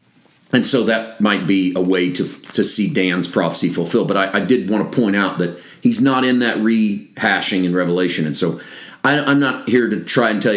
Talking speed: 215 wpm